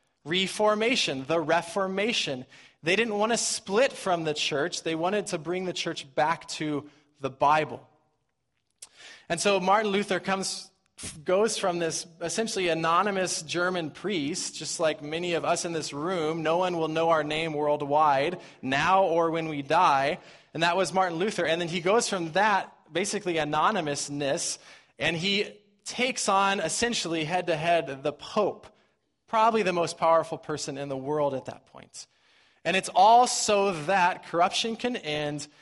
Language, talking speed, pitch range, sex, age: English, 155 wpm, 150-190 Hz, male, 20-39